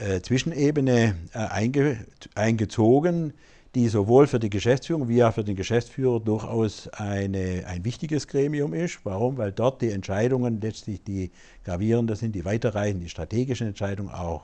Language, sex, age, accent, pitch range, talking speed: German, male, 60-79, German, 100-130 Hz, 135 wpm